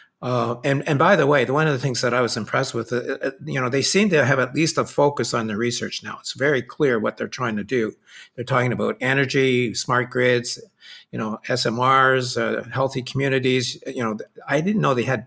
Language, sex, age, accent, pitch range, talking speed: English, male, 50-69, American, 115-135 Hz, 225 wpm